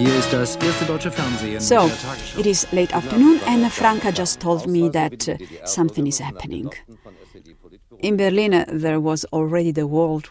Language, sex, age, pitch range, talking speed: English, female, 50-69, 150-200 Hz, 120 wpm